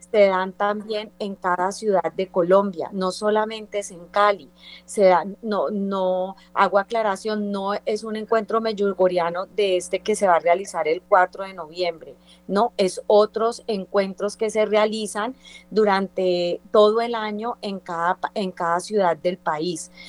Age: 30-49